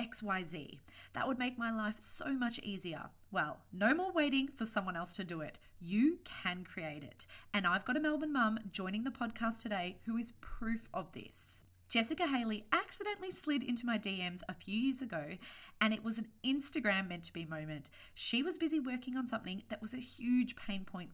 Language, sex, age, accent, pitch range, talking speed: English, female, 30-49, Australian, 180-250 Hz, 205 wpm